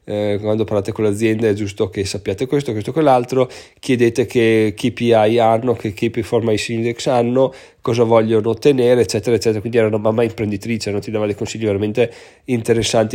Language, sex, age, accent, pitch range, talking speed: Italian, male, 20-39, native, 110-130 Hz, 170 wpm